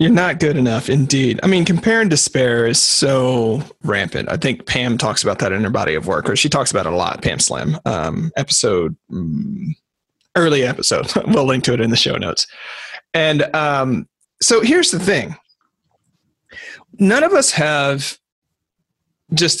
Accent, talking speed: American, 170 wpm